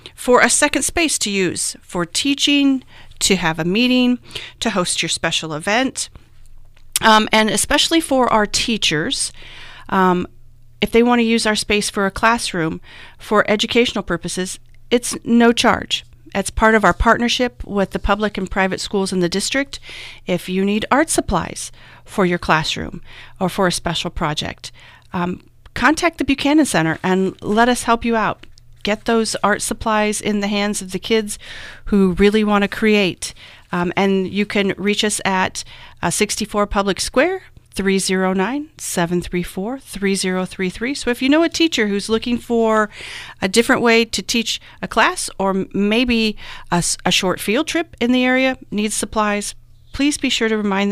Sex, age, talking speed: female, 40-59, 165 wpm